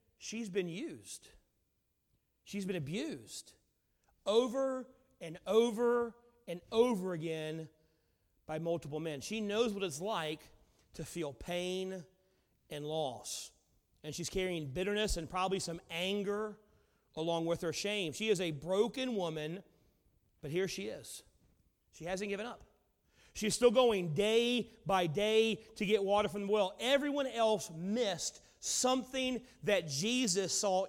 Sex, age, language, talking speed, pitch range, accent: male, 40-59, English, 135 wpm, 185-235 Hz, American